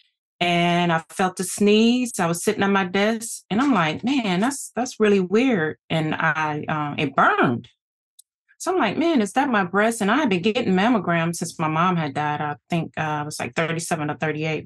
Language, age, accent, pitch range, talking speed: English, 30-49, American, 160-195 Hz, 215 wpm